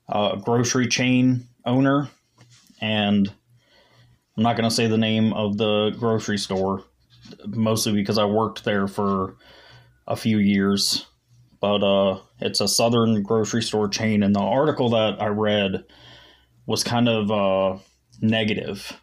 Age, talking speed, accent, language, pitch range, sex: 20-39, 135 wpm, American, English, 100-115 Hz, male